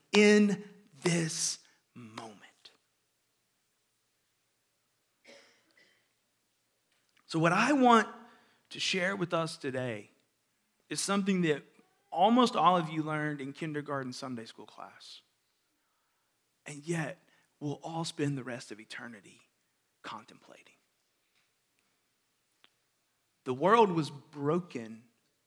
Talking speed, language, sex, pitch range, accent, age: 90 wpm, English, male, 145-195 Hz, American, 40-59